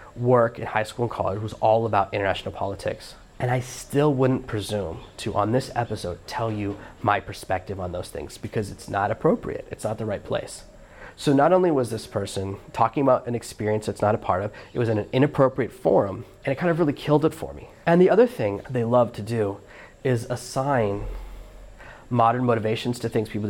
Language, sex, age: English, male, 30-49